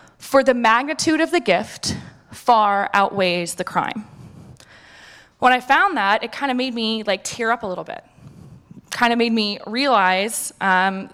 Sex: female